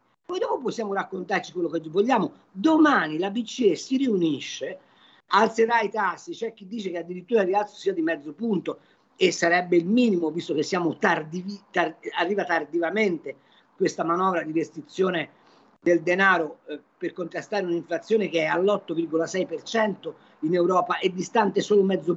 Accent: native